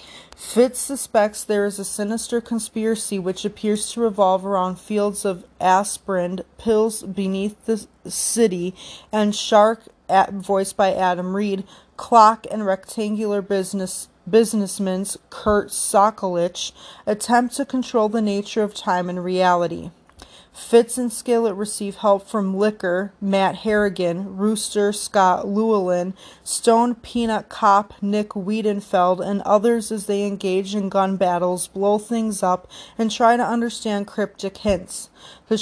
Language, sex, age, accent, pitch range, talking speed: English, female, 30-49, American, 195-220 Hz, 130 wpm